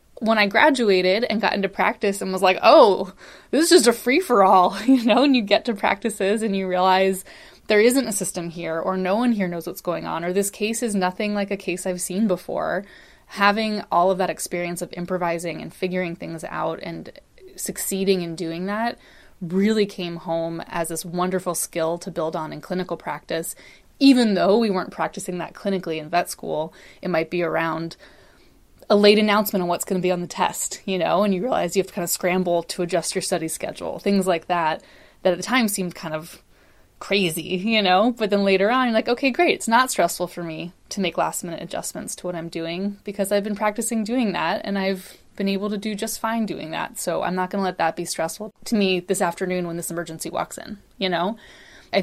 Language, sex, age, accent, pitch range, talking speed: English, female, 20-39, American, 175-215 Hz, 220 wpm